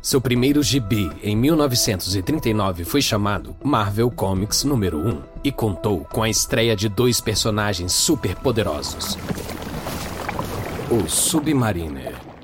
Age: 40-59